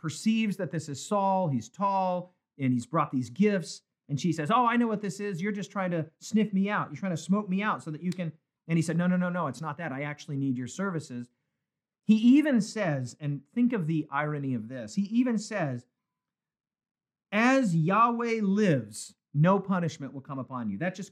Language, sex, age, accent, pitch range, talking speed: English, male, 40-59, American, 150-200 Hz, 220 wpm